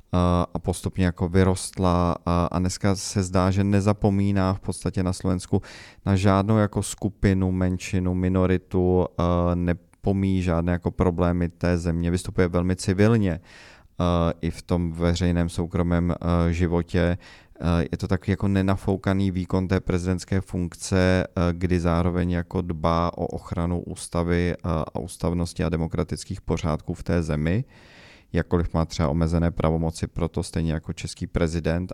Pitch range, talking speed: 85-95 Hz, 130 wpm